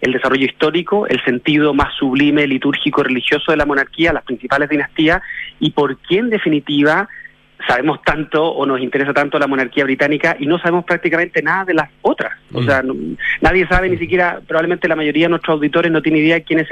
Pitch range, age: 145-190 Hz, 30-49